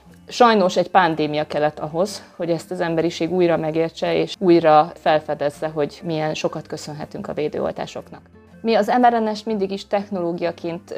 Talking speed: 140 wpm